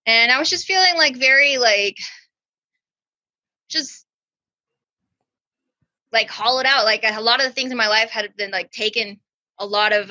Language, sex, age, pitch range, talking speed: English, female, 20-39, 195-240 Hz, 165 wpm